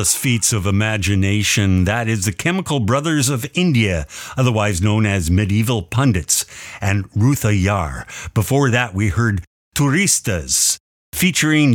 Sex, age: male, 50-69